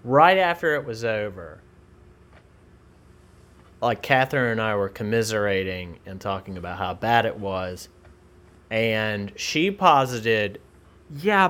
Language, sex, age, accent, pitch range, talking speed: English, male, 30-49, American, 95-145 Hz, 115 wpm